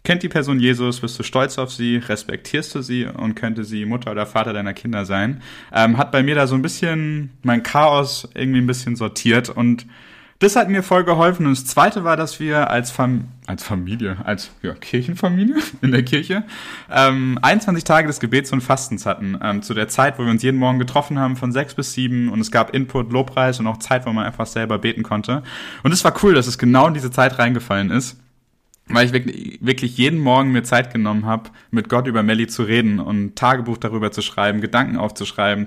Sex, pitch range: male, 110-135 Hz